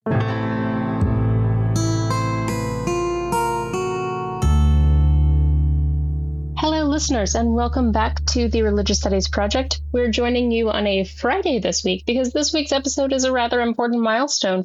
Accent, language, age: American, English, 30-49